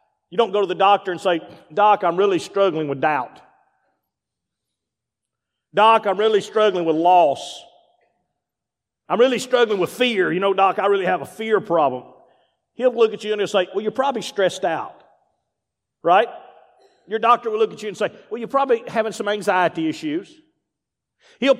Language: English